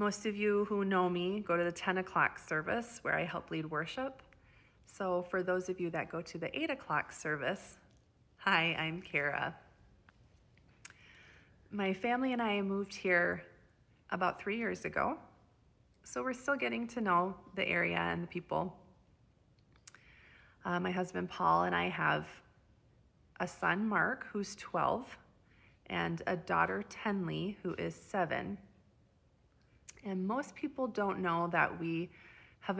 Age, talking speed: 30-49, 145 wpm